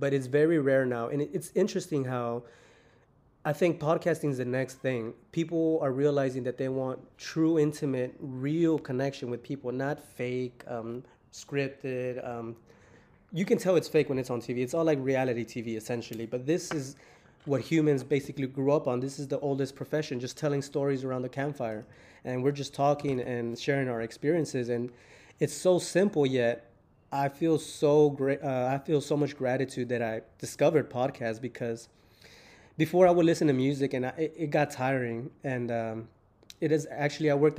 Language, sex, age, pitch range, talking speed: English, male, 20-39, 125-150 Hz, 185 wpm